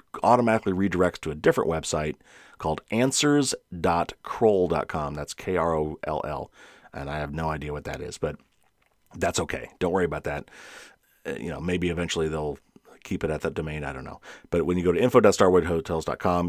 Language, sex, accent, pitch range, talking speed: English, male, American, 80-95 Hz, 175 wpm